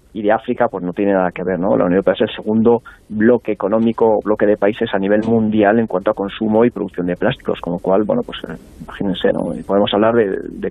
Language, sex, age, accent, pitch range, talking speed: Spanish, male, 40-59, Spanish, 110-135 Hz, 245 wpm